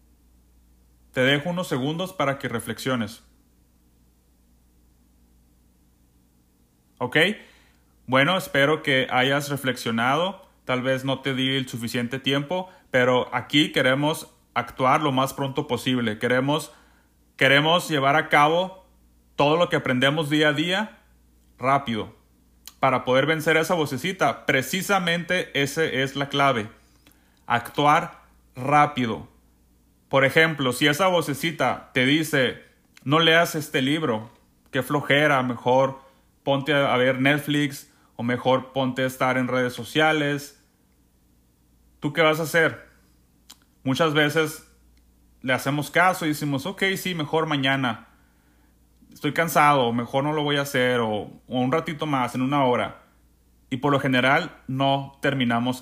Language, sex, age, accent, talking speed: Spanish, male, 30-49, Mexican, 125 wpm